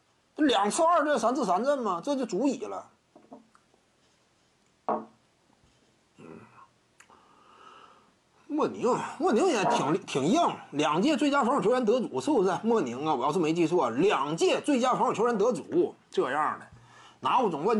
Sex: male